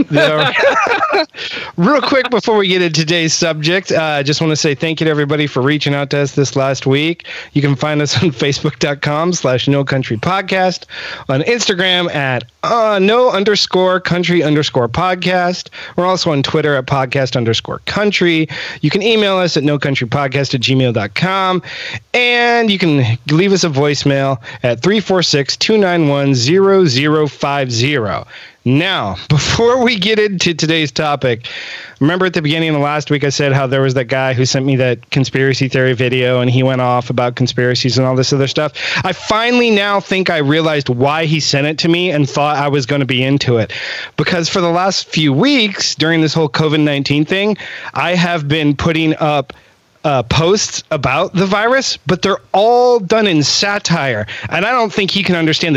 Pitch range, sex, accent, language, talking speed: 140-185 Hz, male, American, English, 175 wpm